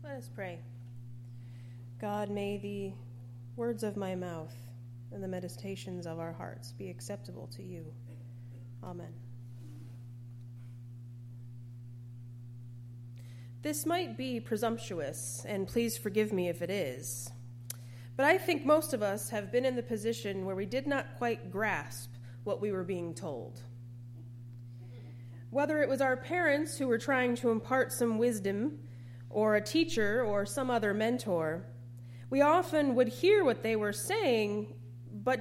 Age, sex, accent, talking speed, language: 30-49, female, American, 140 wpm, English